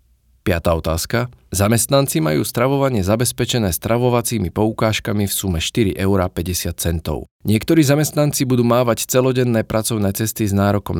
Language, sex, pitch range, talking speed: Slovak, male, 95-120 Hz, 115 wpm